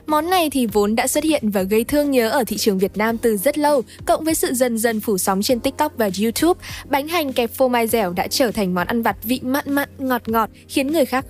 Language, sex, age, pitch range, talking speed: Vietnamese, female, 10-29, 220-300 Hz, 265 wpm